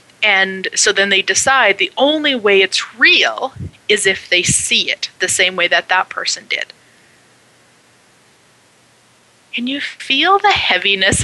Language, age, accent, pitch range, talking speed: English, 30-49, American, 190-255 Hz, 145 wpm